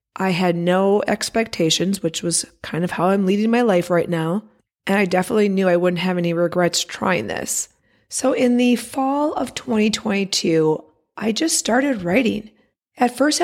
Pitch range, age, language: 175-225 Hz, 30-49, English